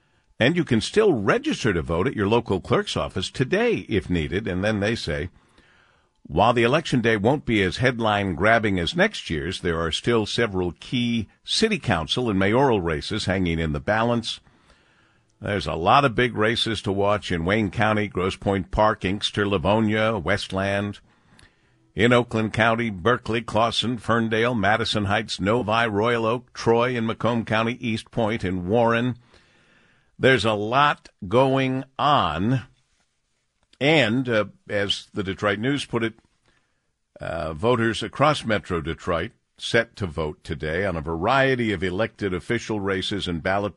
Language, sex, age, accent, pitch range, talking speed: English, male, 50-69, American, 95-115 Hz, 150 wpm